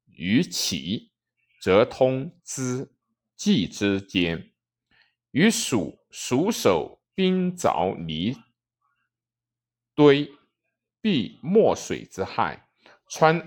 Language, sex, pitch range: Chinese, male, 115-190 Hz